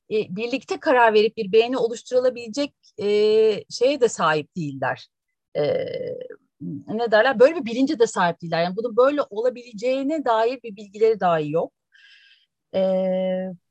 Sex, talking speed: female, 130 wpm